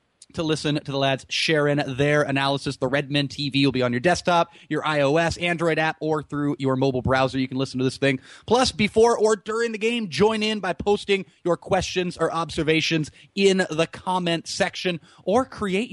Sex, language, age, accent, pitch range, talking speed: male, English, 30-49, American, 150-215 Hz, 195 wpm